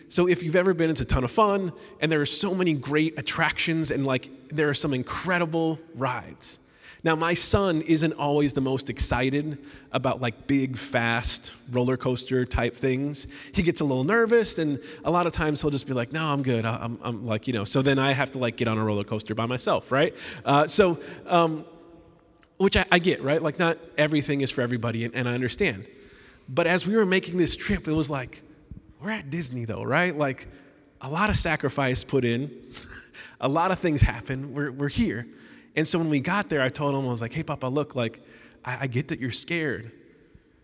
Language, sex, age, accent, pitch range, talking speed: English, male, 20-39, American, 125-160 Hz, 215 wpm